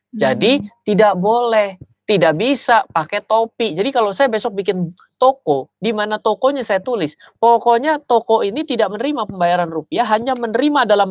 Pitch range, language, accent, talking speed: 165-235 Hz, Indonesian, native, 150 wpm